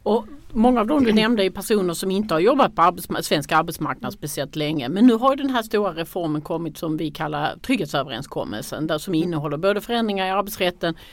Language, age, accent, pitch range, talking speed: Swedish, 40-59, native, 150-195 Hz, 205 wpm